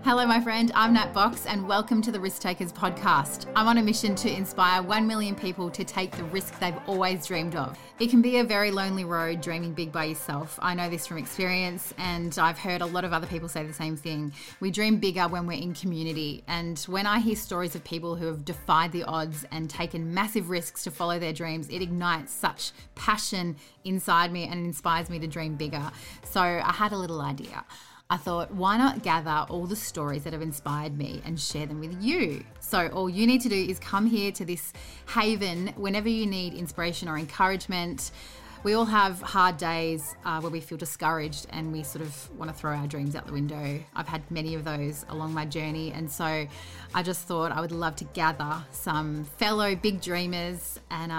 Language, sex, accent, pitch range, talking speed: English, female, Australian, 155-190 Hz, 215 wpm